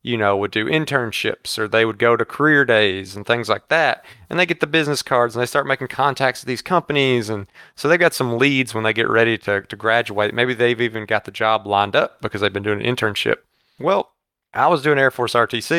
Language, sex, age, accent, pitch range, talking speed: English, male, 30-49, American, 110-135 Hz, 245 wpm